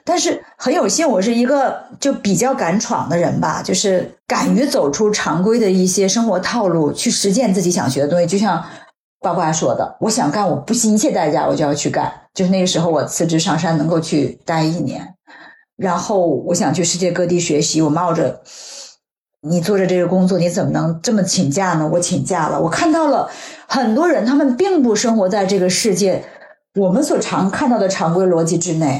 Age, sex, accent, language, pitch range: 50-69, female, native, Chinese, 180-245 Hz